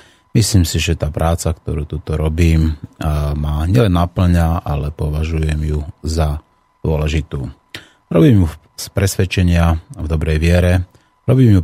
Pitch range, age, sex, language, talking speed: 80-95 Hz, 30-49, male, Slovak, 130 wpm